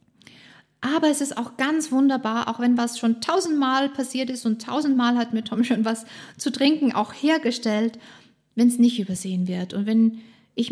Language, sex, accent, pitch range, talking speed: German, female, German, 205-245 Hz, 180 wpm